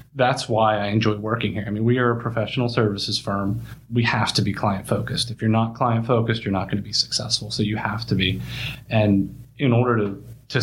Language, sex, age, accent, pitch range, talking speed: English, male, 30-49, American, 105-125 Hz, 230 wpm